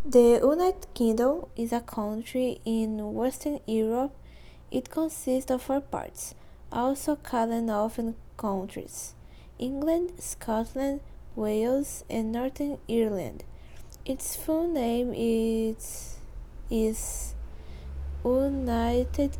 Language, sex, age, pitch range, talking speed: Portuguese, female, 20-39, 220-255 Hz, 95 wpm